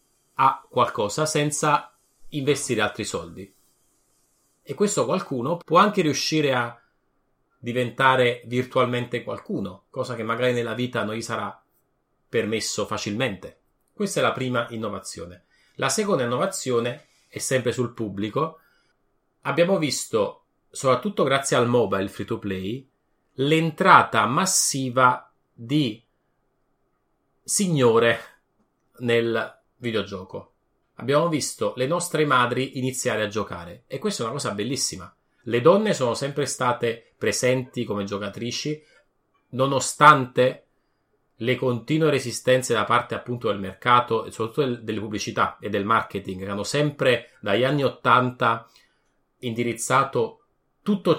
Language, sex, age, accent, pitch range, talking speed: Italian, male, 30-49, native, 115-145 Hz, 115 wpm